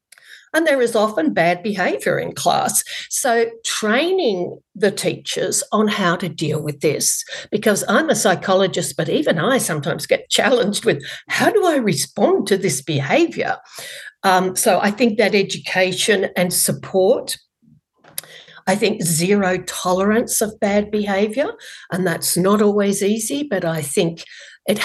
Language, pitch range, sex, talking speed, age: English, 175-225 Hz, female, 145 wpm, 60-79